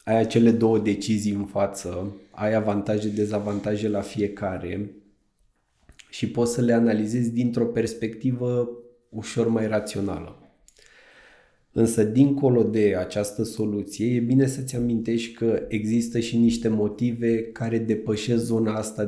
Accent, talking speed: native, 125 wpm